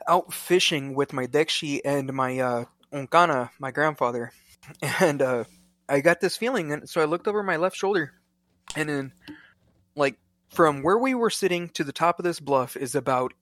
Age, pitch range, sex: 20-39, 115-160 Hz, male